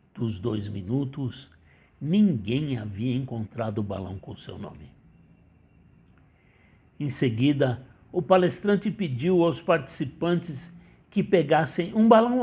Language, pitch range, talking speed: Portuguese, 115-165 Hz, 105 wpm